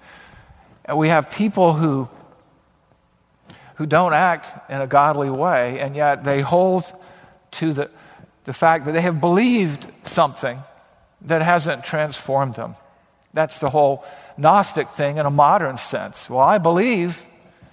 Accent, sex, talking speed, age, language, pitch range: American, male, 135 wpm, 50-69, English, 135-170 Hz